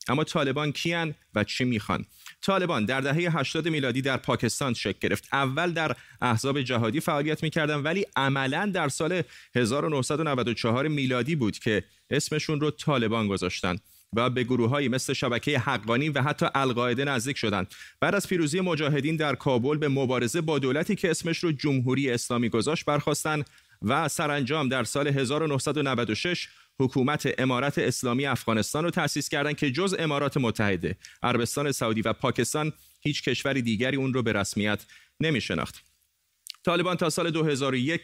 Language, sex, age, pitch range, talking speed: Persian, male, 30-49, 120-155 Hz, 150 wpm